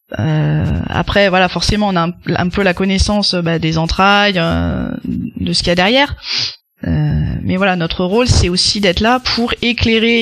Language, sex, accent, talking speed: French, female, French, 195 wpm